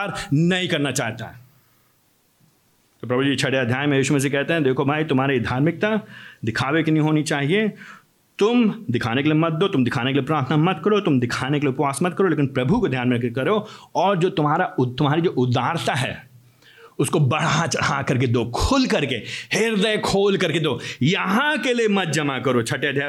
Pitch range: 140-220 Hz